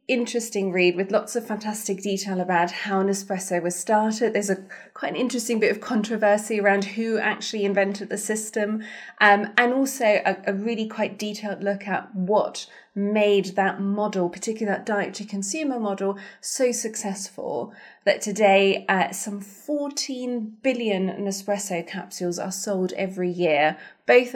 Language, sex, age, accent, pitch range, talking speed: English, female, 20-39, British, 190-225 Hz, 150 wpm